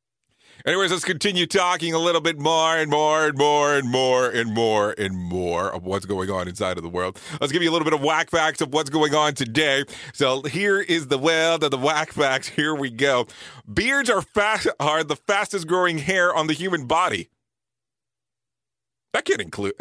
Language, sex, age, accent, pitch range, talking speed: English, male, 40-59, American, 150-195 Hz, 210 wpm